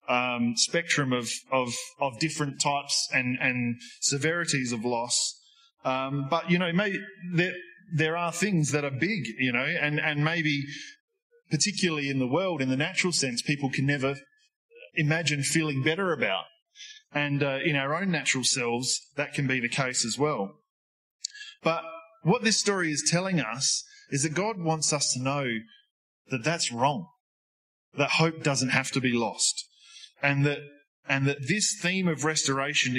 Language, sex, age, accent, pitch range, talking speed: English, male, 20-39, Australian, 135-185 Hz, 165 wpm